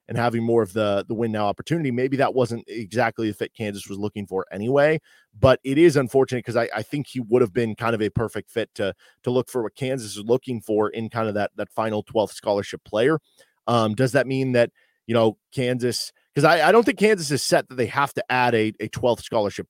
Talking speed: 245 wpm